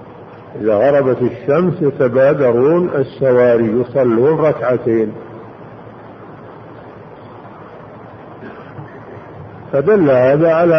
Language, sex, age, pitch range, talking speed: Arabic, male, 50-69, 125-160 Hz, 55 wpm